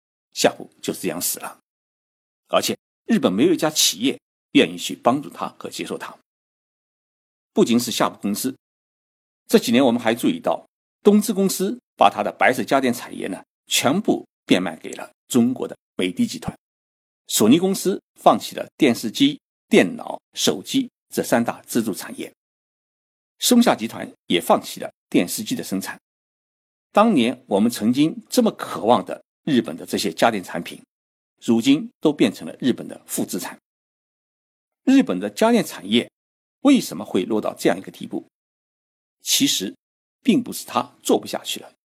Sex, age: male, 50-69